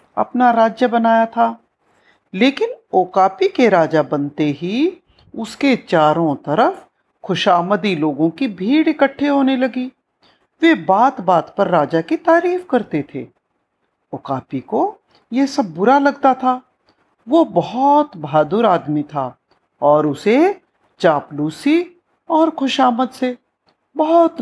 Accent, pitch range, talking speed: native, 175-290 Hz, 110 wpm